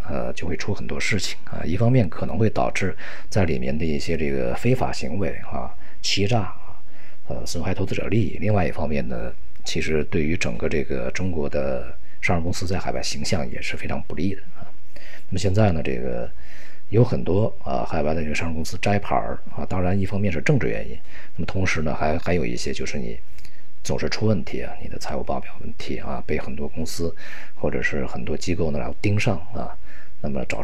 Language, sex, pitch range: Chinese, male, 75-95 Hz